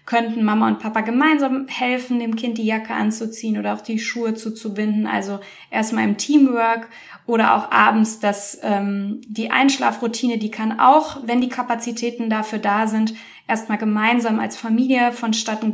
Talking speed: 155 wpm